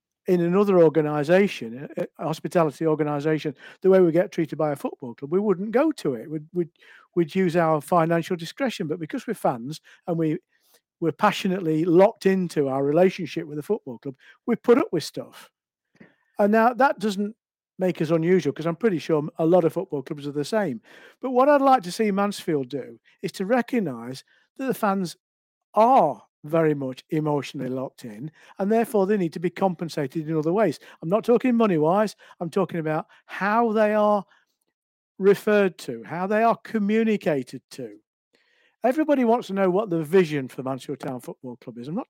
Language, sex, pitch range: English, male, 155-215 Hz